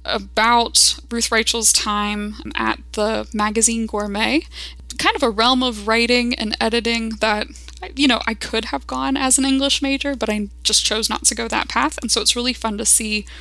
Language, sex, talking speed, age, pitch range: English, female, 195 wpm, 10-29, 210-245 Hz